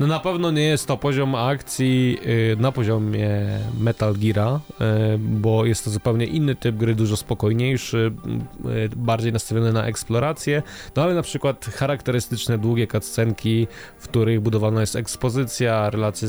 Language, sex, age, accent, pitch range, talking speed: Polish, male, 20-39, native, 110-130 Hz, 135 wpm